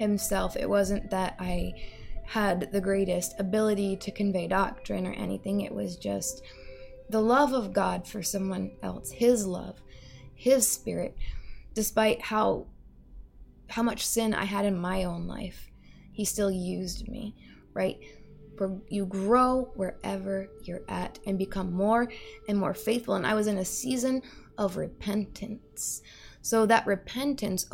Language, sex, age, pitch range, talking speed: English, female, 20-39, 185-240 Hz, 145 wpm